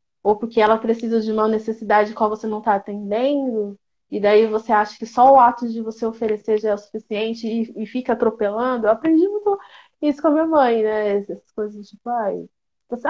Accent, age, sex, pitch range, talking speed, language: Brazilian, 20-39, female, 220-290 Hz, 215 wpm, Portuguese